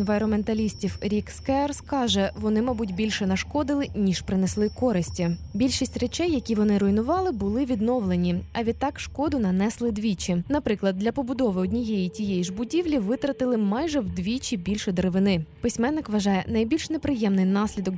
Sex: female